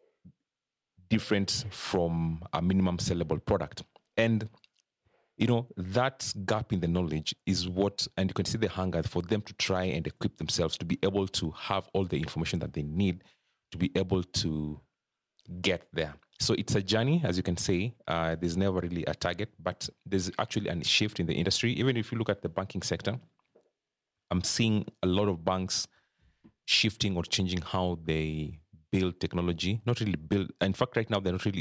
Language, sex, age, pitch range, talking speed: English, male, 30-49, 85-105 Hz, 190 wpm